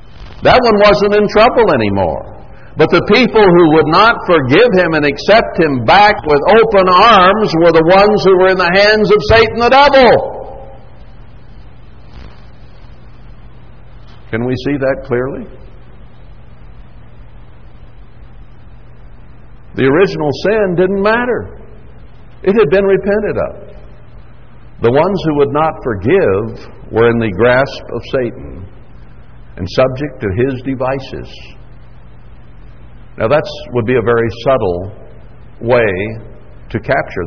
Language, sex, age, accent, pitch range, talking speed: English, male, 60-79, American, 125-205 Hz, 120 wpm